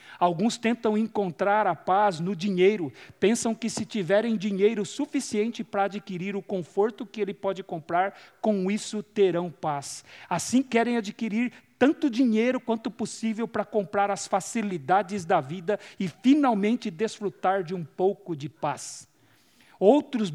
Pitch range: 195-235 Hz